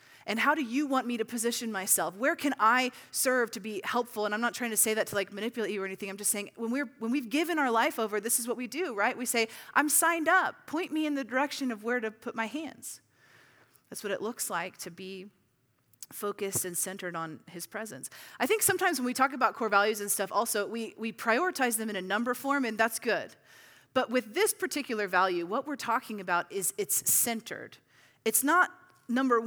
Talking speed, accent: 230 wpm, American